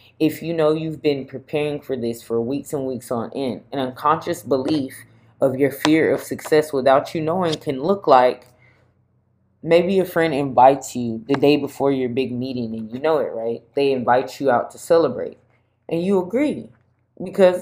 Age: 20-39